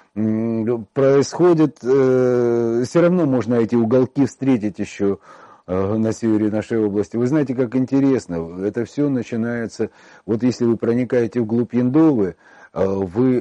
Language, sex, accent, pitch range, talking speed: Russian, male, native, 110-130 Hz, 115 wpm